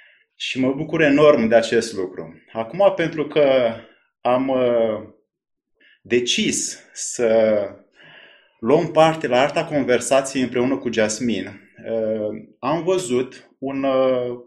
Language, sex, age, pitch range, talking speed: Romanian, male, 20-39, 115-150 Hz, 100 wpm